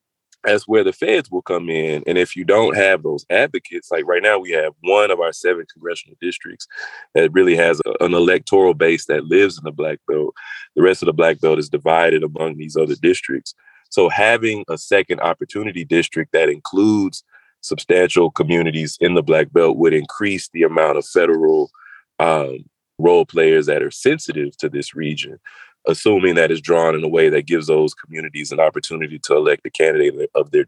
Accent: American